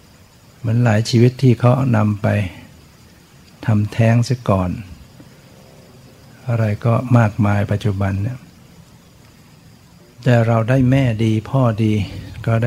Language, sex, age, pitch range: Thai, male, 60-79, 105-125 Hz